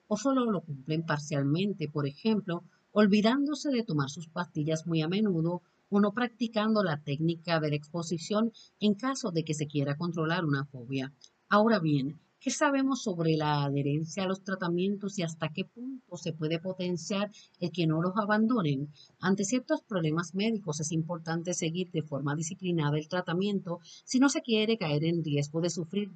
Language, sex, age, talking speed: Spanish, female, 50-69, 170 wpm